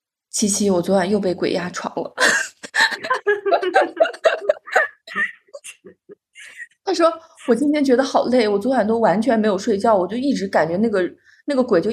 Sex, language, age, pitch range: female, Chinese, 20-39, 190-270 Hz